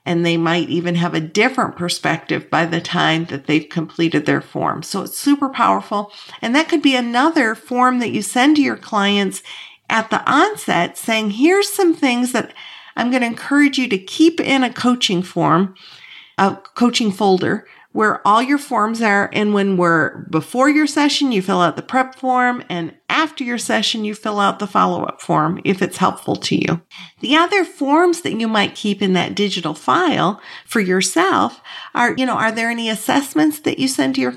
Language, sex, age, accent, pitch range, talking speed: English, female, 50-69, American, 190-270 Hz, 195 wpm